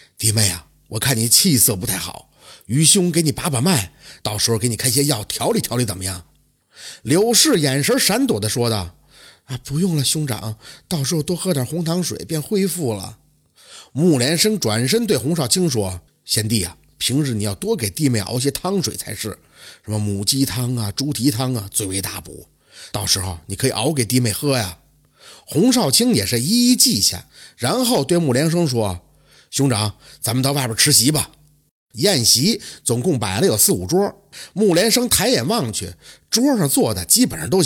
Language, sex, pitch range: Chinese, male, 110-180 Hz